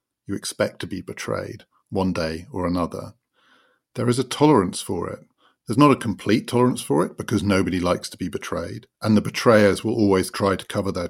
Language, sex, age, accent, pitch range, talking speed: English, male, 50-69, British, 95-115 Hz, 200 wpm